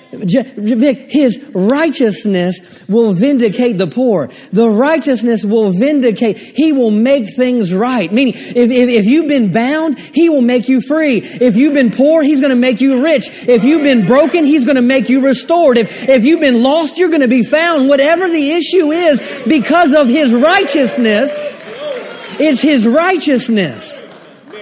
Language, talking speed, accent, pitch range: English, 165 wpm, American, 210-275 Hz